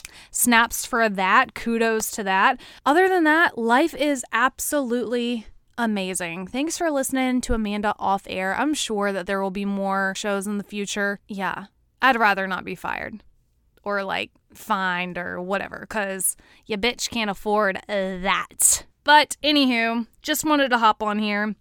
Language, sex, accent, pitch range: English, female, American, 195-240 Hz